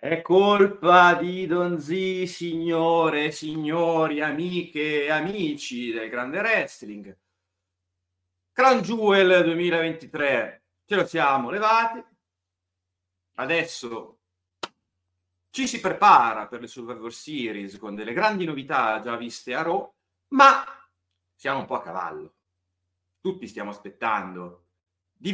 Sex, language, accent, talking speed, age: male, Italian, native, 105 wpm, 40-59